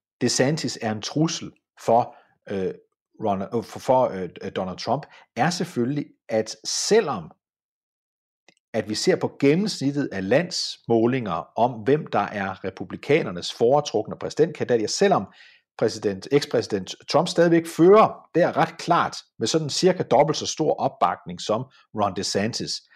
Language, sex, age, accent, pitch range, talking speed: Danish, male, 50-69, native, 120-180 Hz, 135 wpm